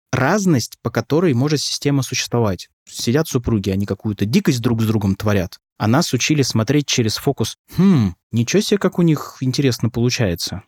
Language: Russian